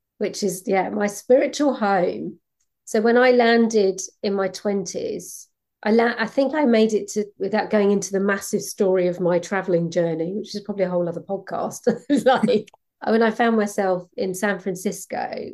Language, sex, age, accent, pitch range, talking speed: English, female, 40-59, British, 185-225 Hz, 185 wpm